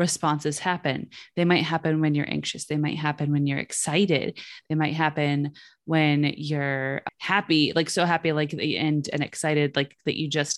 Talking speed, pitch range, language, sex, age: 180 wpm, 145-165 Hz, English, female, 20-39